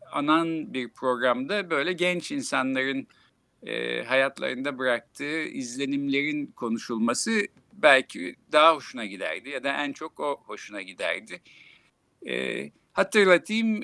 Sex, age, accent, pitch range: male, 60-79, native, 120-180 Hz